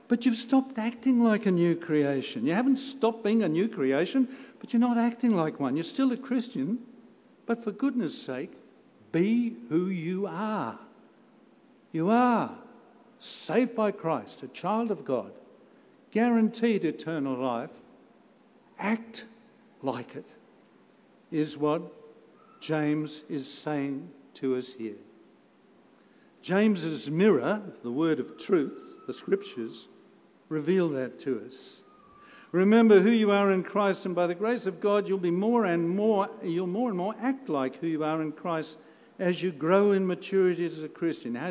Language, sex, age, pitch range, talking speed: English, male, 60-79, 165-230 Hz, 150 wpm